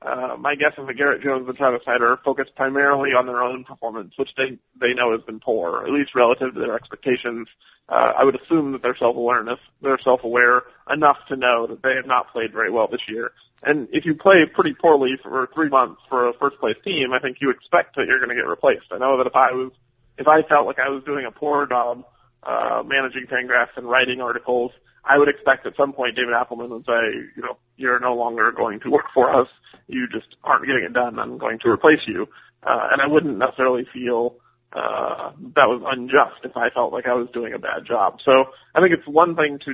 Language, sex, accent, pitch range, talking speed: English, male, American, 125-140 Hz, 230 wpm